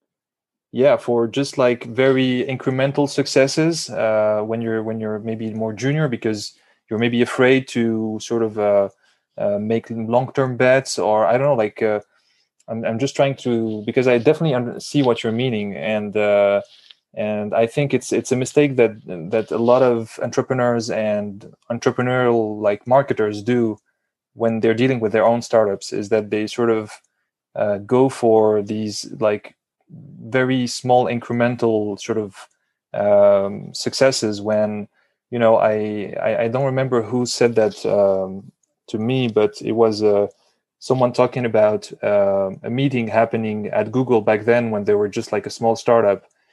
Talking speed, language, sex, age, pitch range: 165 wpm, English, male, 20-39, 105-125 Hz